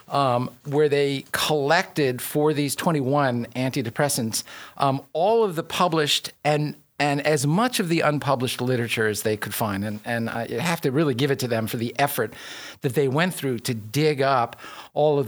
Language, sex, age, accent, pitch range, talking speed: English, male, 50-69, American, 120-150 Hz, 185 wpm